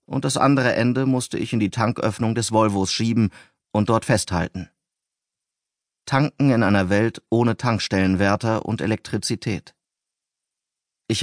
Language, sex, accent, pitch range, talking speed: German, male, German, 95-115 Hz, 130 wpm